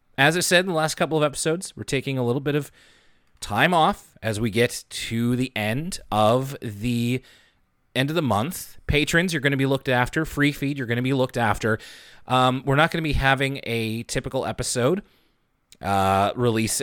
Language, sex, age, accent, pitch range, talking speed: English, male, 30-49, American, 115-145 Hz, 200 wpm